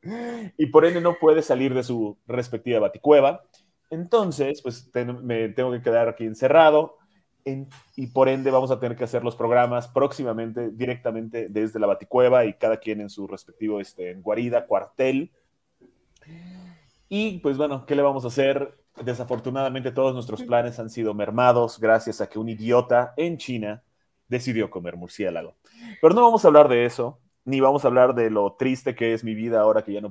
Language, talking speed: English, 175 wpm